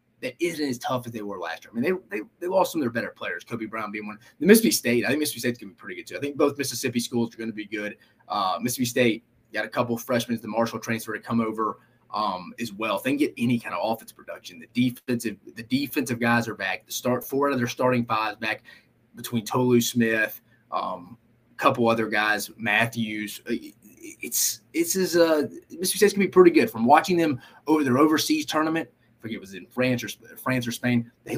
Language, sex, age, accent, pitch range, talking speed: English, male, 30-49, American, 115-175 Hz, 235 wpm